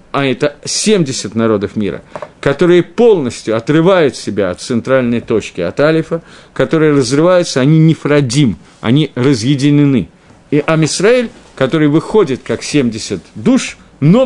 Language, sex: Russian, male